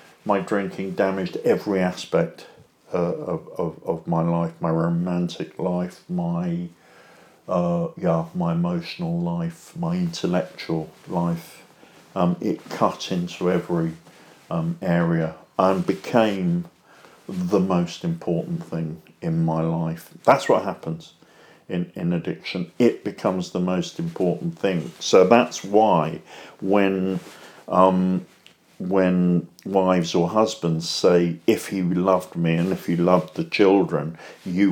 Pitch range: 85-100 Hz